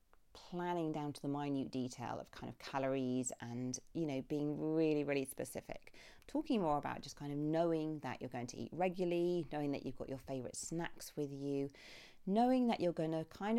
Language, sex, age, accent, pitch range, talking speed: English, female, 40-59, British, 135-190 Hz, 200 wpm